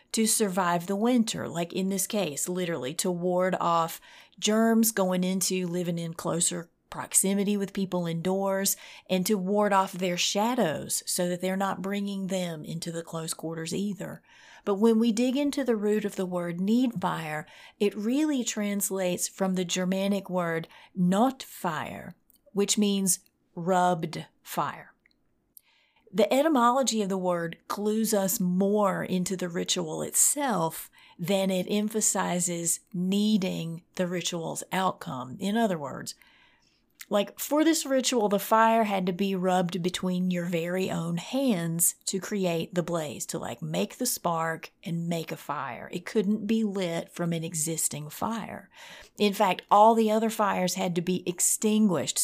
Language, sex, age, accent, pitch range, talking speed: English, female, 30-49, American, 180-215 Hz, 150 wpm